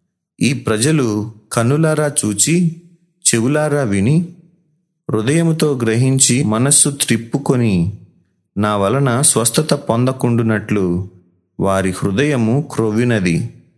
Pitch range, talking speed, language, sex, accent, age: 105-140 Hz, 75 wpm, Telugu, male, native, 30-49